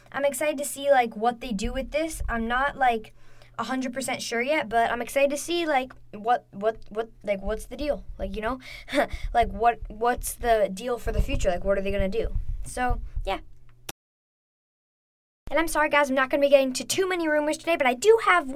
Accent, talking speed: American, 225 wpm